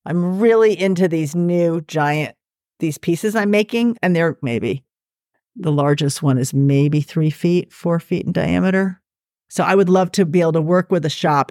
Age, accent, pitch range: 40-59, American, 140-175 Hz